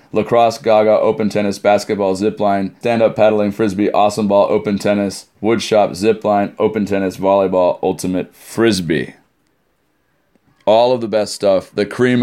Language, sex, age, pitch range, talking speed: English, male, 30-49, 90-110 Hz, 130 wpm